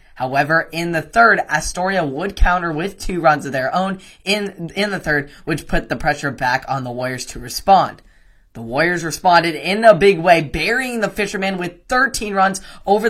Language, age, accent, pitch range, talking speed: English, 10-29, American, 150-195 Hz, 190 wpm